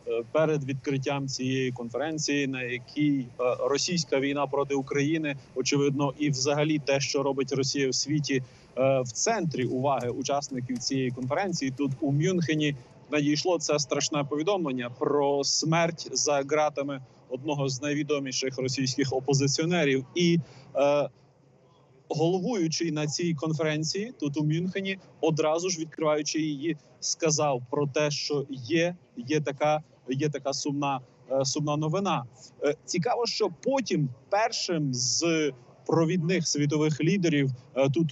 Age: 30-49